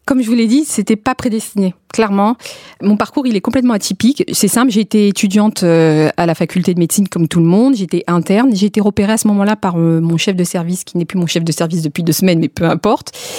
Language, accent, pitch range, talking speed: French, French, 180-240 Hz, 245 wpm